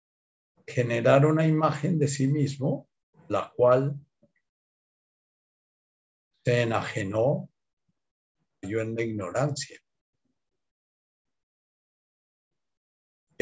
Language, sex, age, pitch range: Spanish, male, 50-69, 100-145 Hz